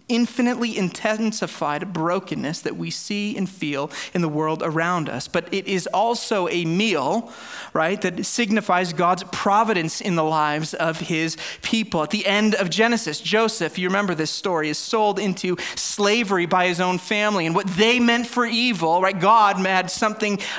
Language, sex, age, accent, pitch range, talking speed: English, male, 30-49, American, 185-235 Hz, 170 wpm